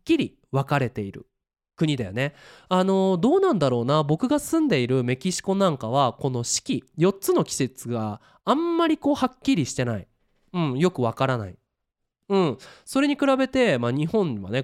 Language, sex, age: Japanese, male, 20-39